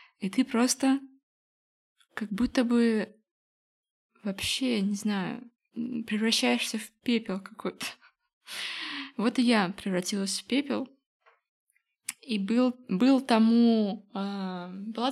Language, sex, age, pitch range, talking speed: Russian, female, 20-39, 195-235 Hz, 100 wpm